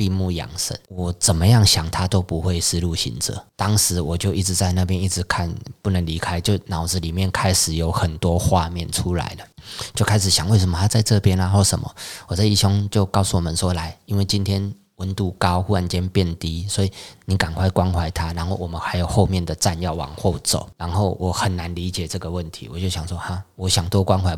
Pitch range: 85-100 Hz